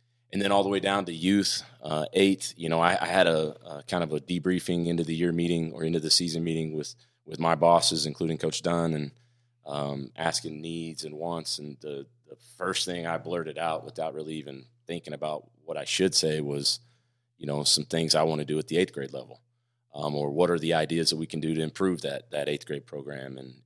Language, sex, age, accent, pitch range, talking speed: English, male, 30-49, American, 75-85 Hz, 235 wpm